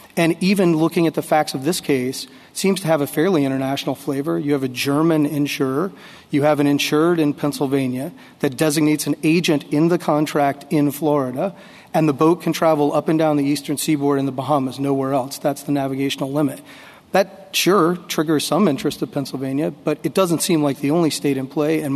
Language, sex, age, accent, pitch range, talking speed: English, male, 40-59, American, 140-160 Hz, 200 wpm